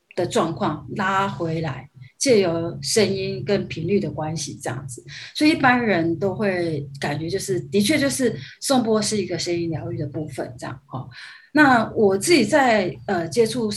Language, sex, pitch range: Chinese, female, 155-215 Hz